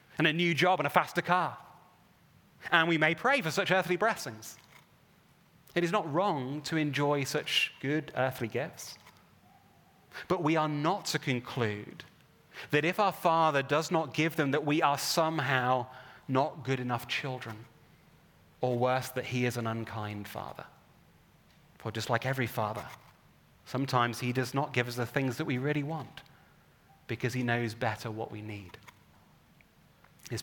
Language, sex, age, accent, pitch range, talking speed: English, male, 30-49, British, 115-155 Hz, 160 wpm